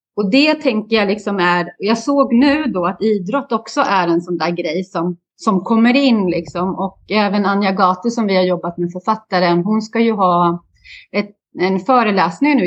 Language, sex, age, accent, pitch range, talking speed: Swedish, female, 30-49, native, 185-235 Hz, 195 wpm